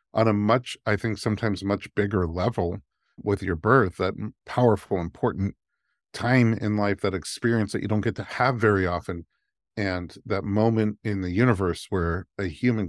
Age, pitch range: 50-69, 95-110 Hz